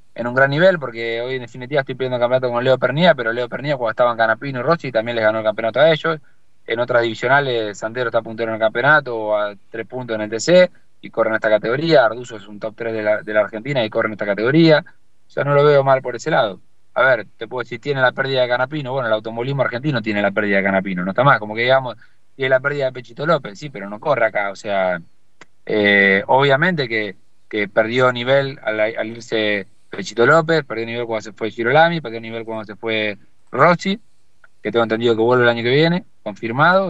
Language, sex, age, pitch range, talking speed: Spanish, male, 20-39, 110-135 Hz, 230 wpm